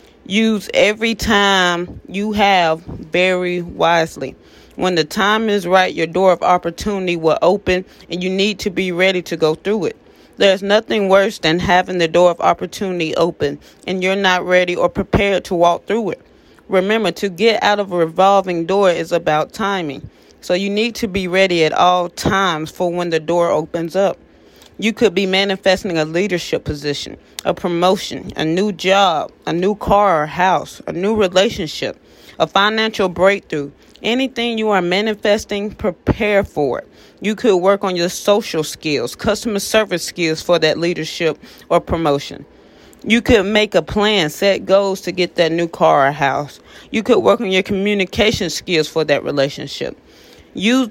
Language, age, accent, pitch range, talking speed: English, 30-49, American, 170-205 Hz, 170 wpm